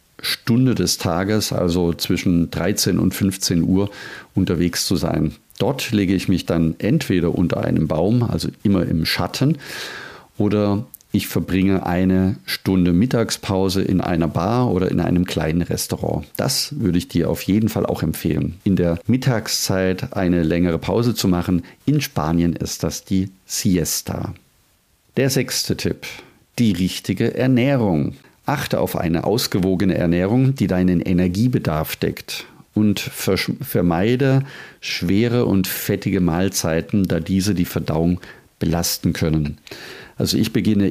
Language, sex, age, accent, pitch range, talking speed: German, male, 40-59, German, 90-110 Hz, 135 wpm